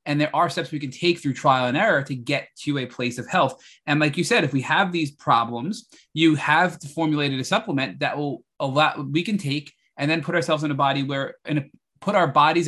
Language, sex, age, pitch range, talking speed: English, male, 20-39, 135-165 Hz, 240 wpm